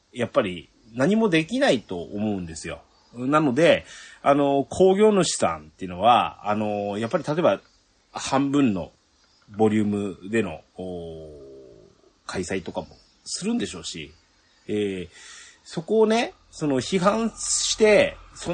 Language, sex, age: Japanese, male, 30-49